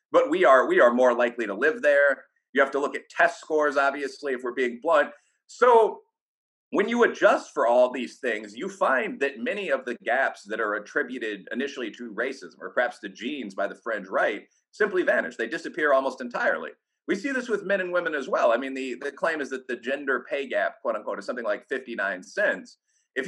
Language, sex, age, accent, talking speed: English, male, 30-49, American, 220 wpm